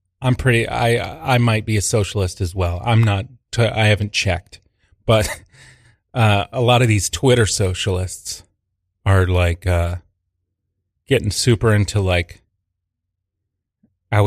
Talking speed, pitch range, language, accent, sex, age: 130 wpm, 95-120 Hz, English, American, male, 30-49